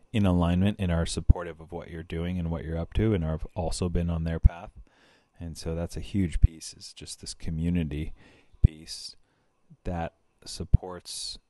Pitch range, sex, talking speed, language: 80-90 Hz, male, 175 wpm, German